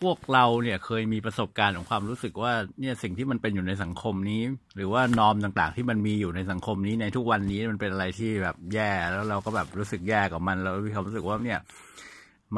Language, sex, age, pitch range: Thai, male, 60-79, 105-130 Hz